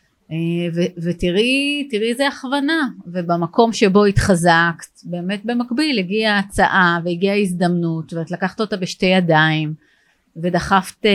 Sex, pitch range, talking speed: female, 175-235 Hz, 100 wpm